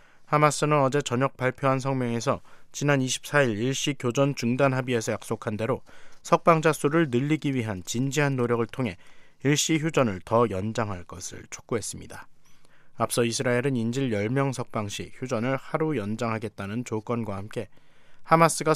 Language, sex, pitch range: Korean, male, 115-145 Hz